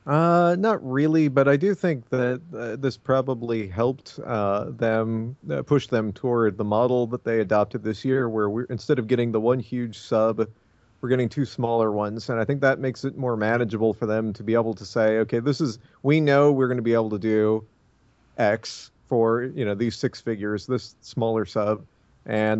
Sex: male